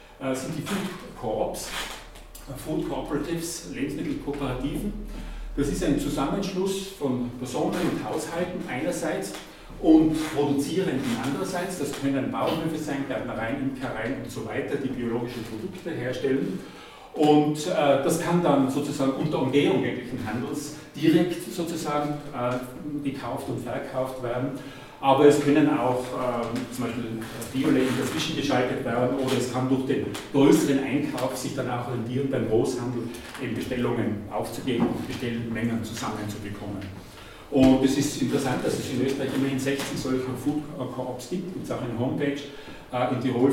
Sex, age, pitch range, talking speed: male, 40-59, 120-145 Hz, 135 wpm